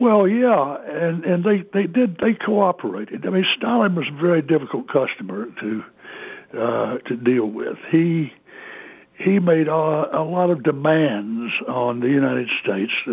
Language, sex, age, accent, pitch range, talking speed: English, male, 60-79, American, 125-165 Hz, 155 wpm